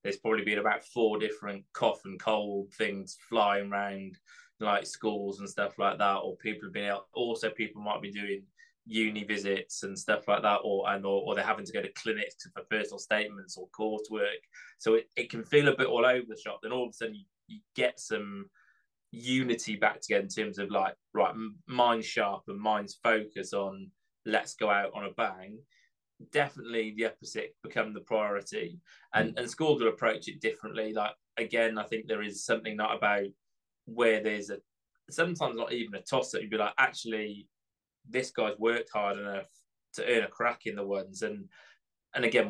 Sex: male